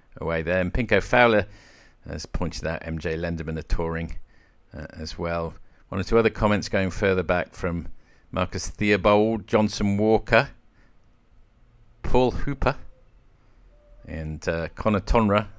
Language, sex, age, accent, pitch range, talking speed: English, male, 50-69, British, 85-110 Hz, 130 wpm